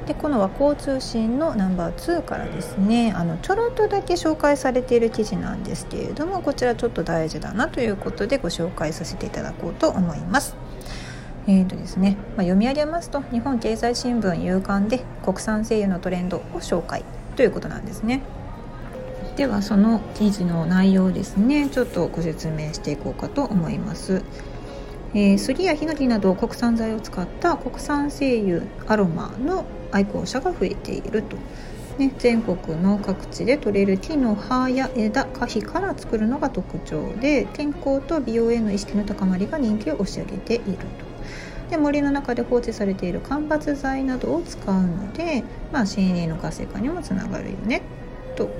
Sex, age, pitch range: female, 40-59, 190-275 Hz